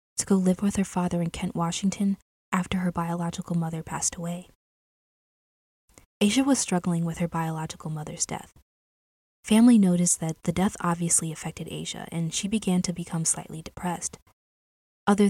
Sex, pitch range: female, 165-195 Hz